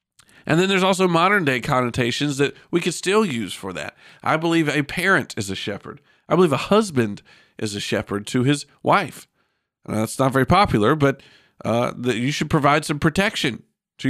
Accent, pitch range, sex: American, 115-155 Hz, male